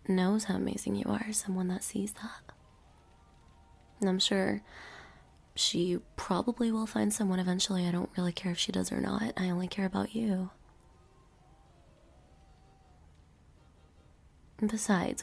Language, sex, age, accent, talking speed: English, female, 20-39, American, 125 wpm